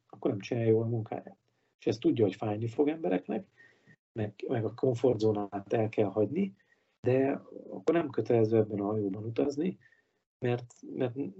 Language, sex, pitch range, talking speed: Hungarian, male, 105-130 Hz, 160 wpm